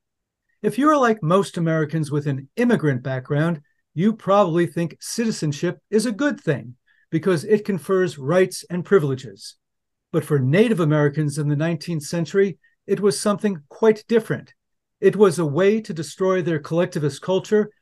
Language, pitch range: English, 150-205 Hz